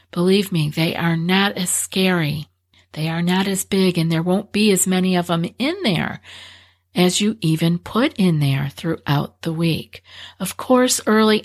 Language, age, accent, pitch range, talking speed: English, 50-69, American, 150-190 Hz, 180 wpm